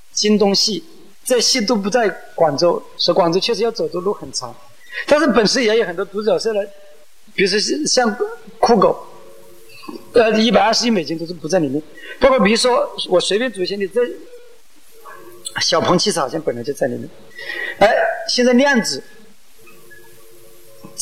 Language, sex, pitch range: Chinese, male, 165-250 Hz